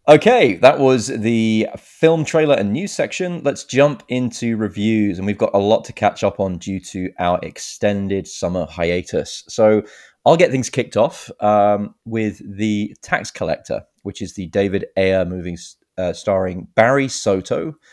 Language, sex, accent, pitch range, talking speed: English, male, British, 90-110 Hz, 165 wpm